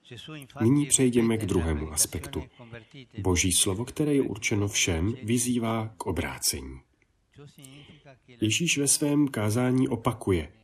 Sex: male